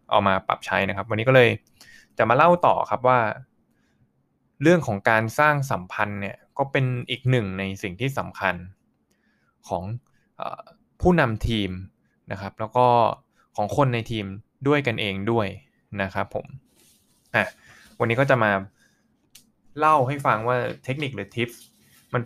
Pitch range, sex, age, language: 100-125 Hz, male, 20-39, Thai